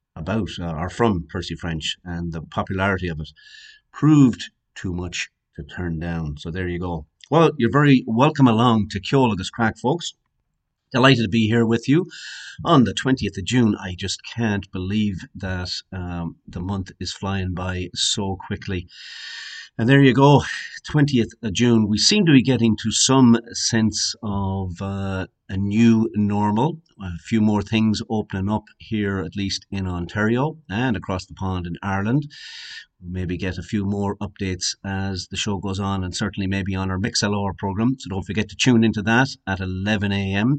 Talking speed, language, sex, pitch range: 175 wpm, English, male, 90-115 Hz